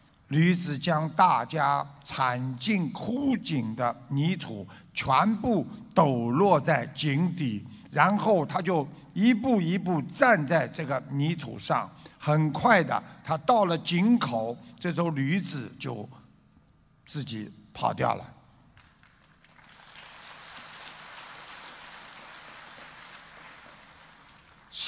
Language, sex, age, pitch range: Chinese, male, 50-69, 145-200 Hz